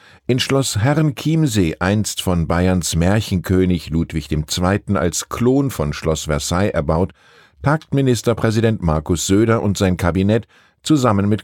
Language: German